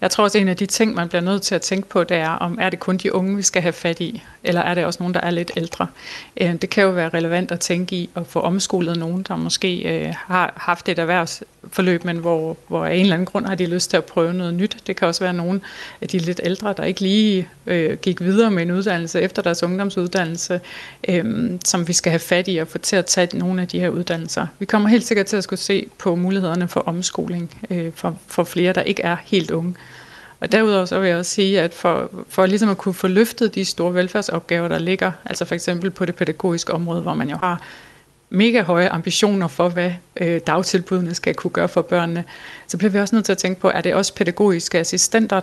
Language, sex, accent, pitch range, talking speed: Danish, female, native, 175-195 Hz, 240 wpm